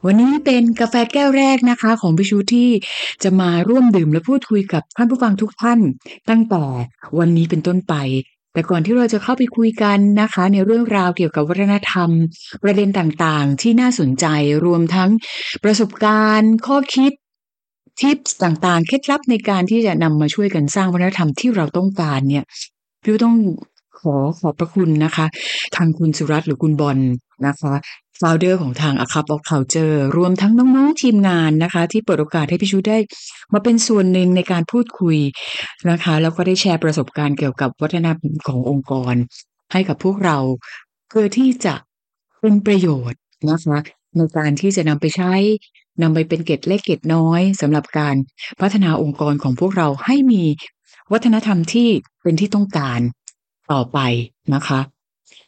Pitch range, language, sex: 155-215 Hz, Thai, female